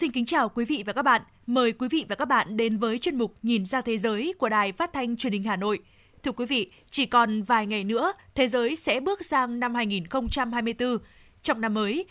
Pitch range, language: 225-285 Hz, Vietnamese